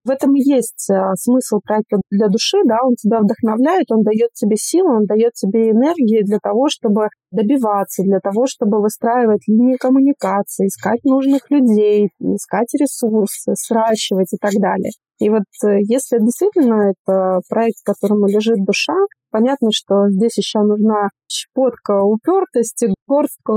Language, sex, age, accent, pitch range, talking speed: Russian, female, 30-49, native, 205-240 Hz, 145 wpm